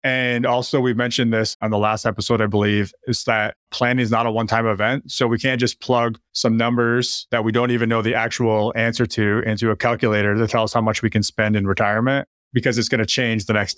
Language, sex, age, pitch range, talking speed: English, male, 30-49, 110-130 Hz, 240 wpm